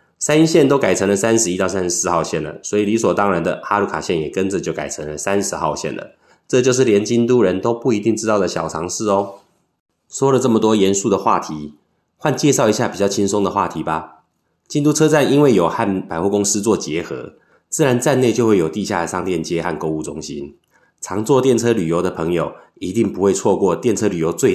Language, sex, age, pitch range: Chinese, male, 20-39, 85-125 Hz